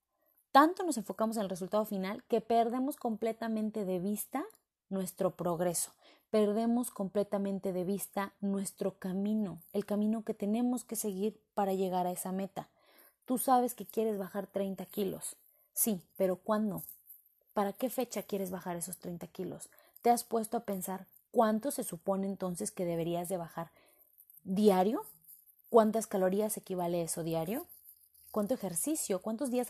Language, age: Spanish, 30-49